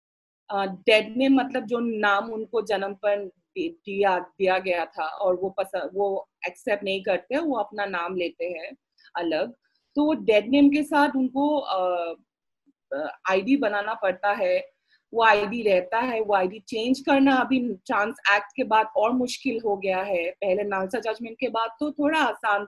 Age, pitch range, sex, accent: 30-49, 205-285 Hz, female, native